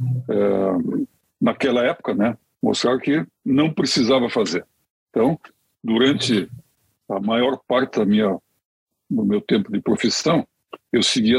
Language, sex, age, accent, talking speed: Portuguese, male, 60-79, Brazilian, 120 wpm